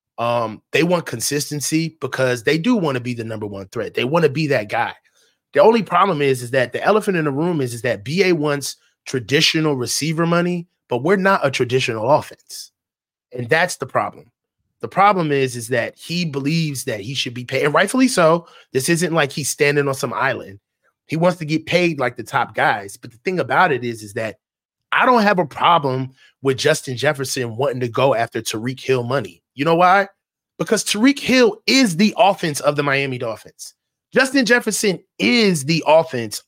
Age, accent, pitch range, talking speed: 30-49, American, 135-195 Hz, 200 wpm